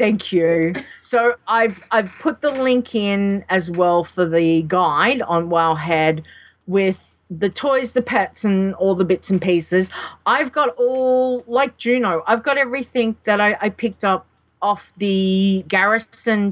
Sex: female